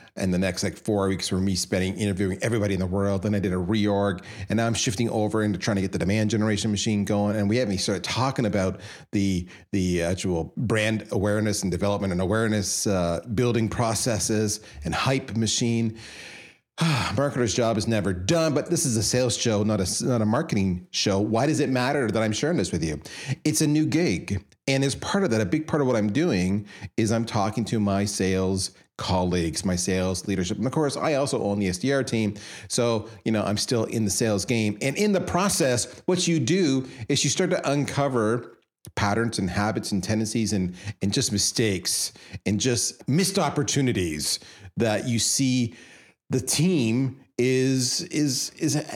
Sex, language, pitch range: male, English, 100-135 Hz